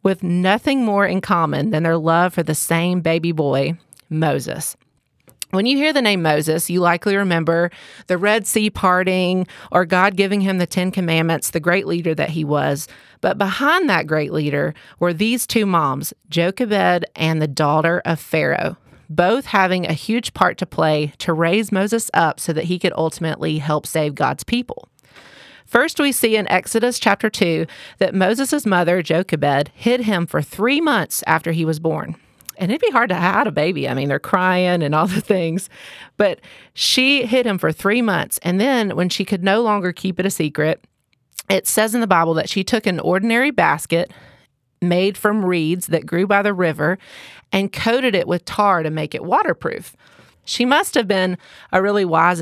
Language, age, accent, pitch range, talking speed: English, 30-49, American, 165-210 Hz, 190 wpm